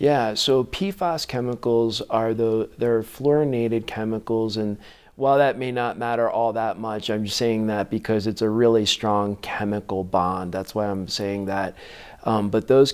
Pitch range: 100-120 Hz